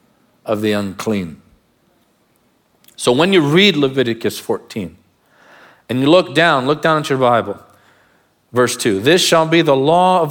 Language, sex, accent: English, male, American